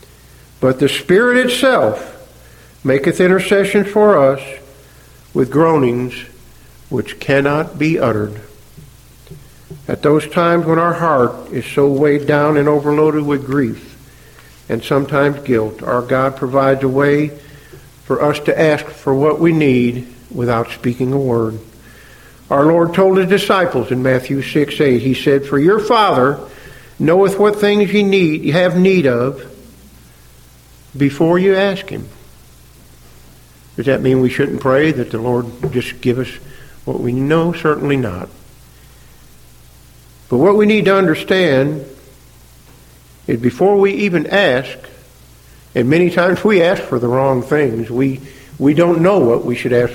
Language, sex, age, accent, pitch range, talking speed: English, male, 50-69, American, 125-155 Hz, 145 wpm